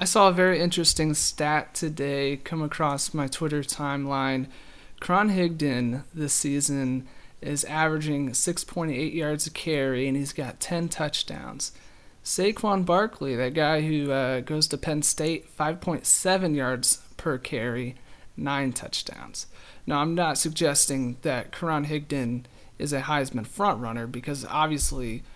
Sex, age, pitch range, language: male, 30-49, 135-160 Hz, English